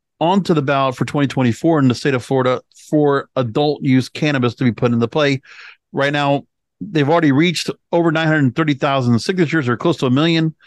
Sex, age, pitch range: male, 50-69, 135-160 Hz